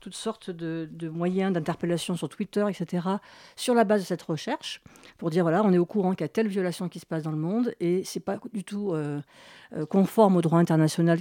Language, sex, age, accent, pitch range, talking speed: French, female, 50-69, French, 165-215 Hz, 230 wpm